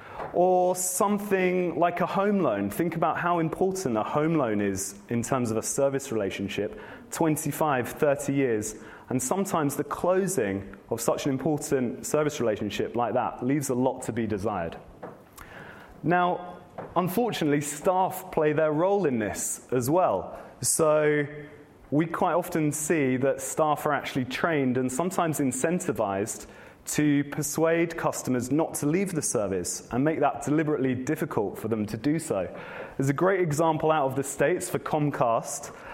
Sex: male